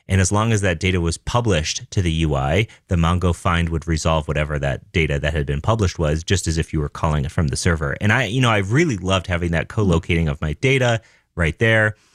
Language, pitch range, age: English, 85-115 Hz, 30-49